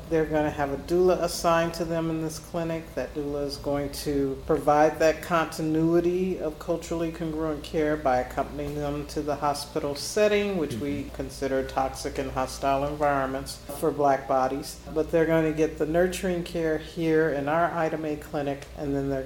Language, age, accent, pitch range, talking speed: English, 50-69, American, 135-160 Hz, 180 wpm